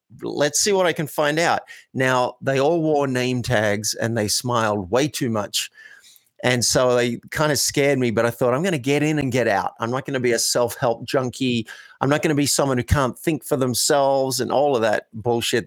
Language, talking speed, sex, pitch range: English, 235 wpm, male, 115-145 Hz